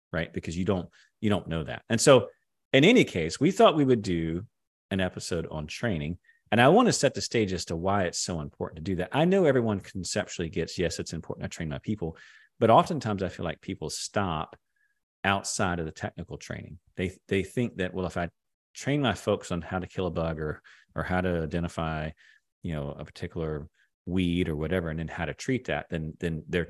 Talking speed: 220 wpm